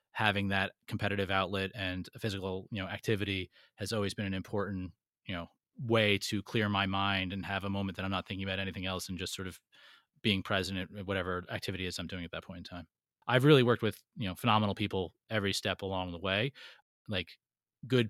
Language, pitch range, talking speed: English, 95-115 Hz, 220 wpm